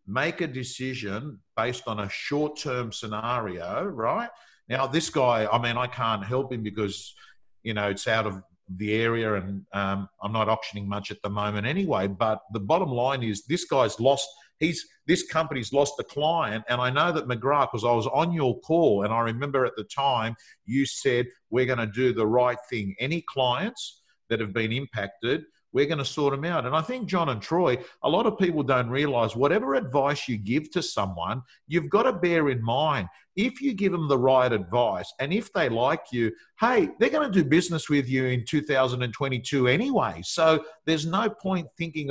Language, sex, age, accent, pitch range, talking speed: English, male, 50-69, Australian, 110-145 Hz, 200 wpm